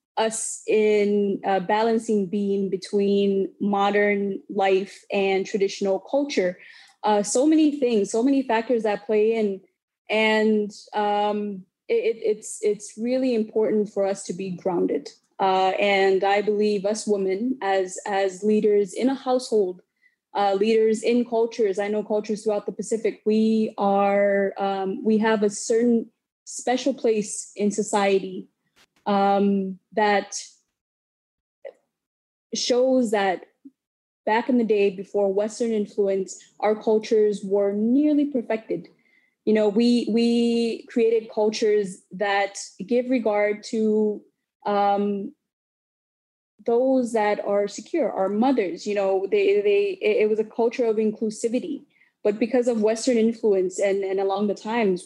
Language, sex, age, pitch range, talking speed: English, female, 20-39, 200-230 Hz, 130 wpm